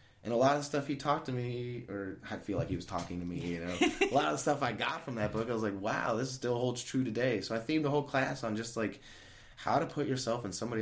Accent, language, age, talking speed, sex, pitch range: American, English, 20-39, 295 wpm, male, 90-115 Hz